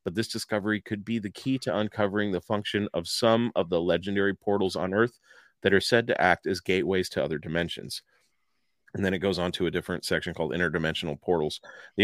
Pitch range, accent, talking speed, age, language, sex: 90-105 Hz, American, 210 wpm, 30-49, English, male